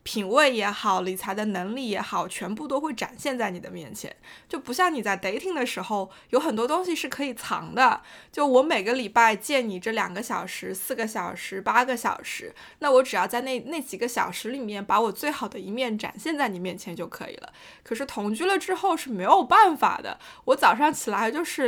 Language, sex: Chinese, female